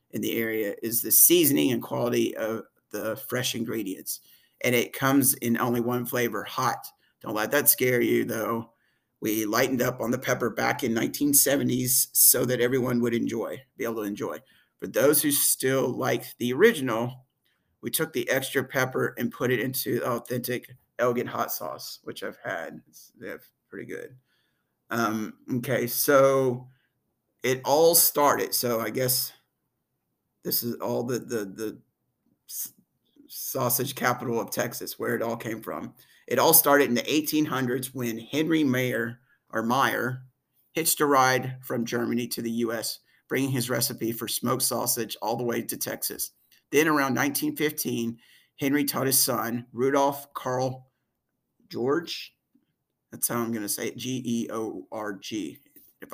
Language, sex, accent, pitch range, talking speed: English, male, American, 115-135 Hz, 150 wpm